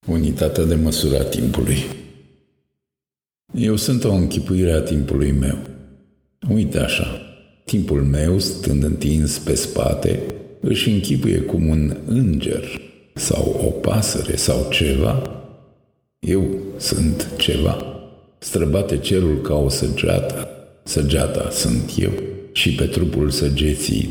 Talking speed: 110 wpm